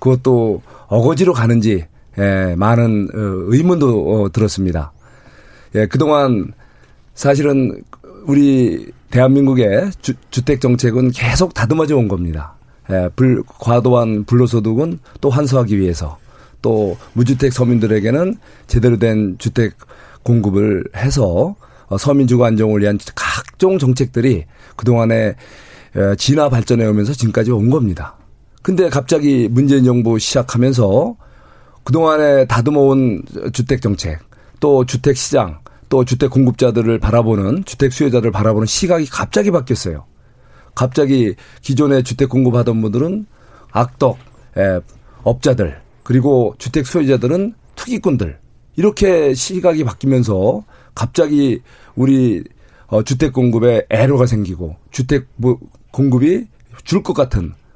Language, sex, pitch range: Korean, male, 110-135 Hz